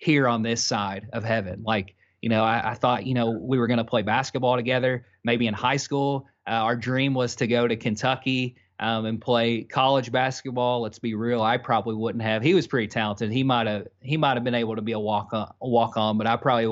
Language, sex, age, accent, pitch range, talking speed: English, male, 30-49, American, 115-135 Hz, 225 wpm